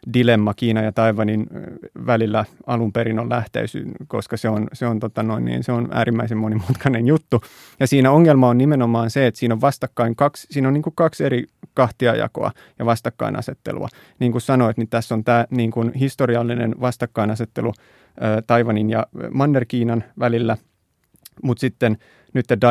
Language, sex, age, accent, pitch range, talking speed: Finnish, male, 30-49, native, 110-125 Hz, 155 wpm